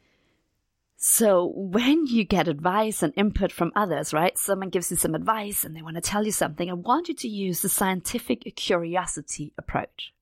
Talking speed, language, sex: 180 wpm, English, female